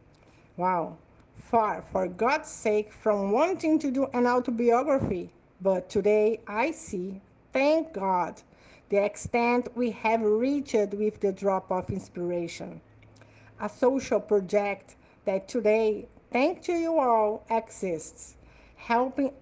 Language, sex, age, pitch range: Portuguese, female, 50-69, 205-260 Hz